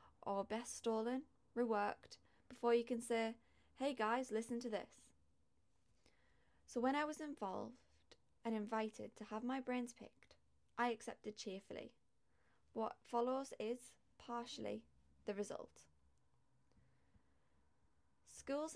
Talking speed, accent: 110 wpm, British